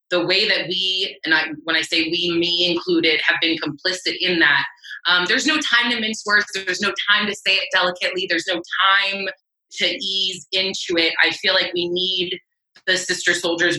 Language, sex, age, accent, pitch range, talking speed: English, female, 20-39, American, 165-195 Hz, 195 wpm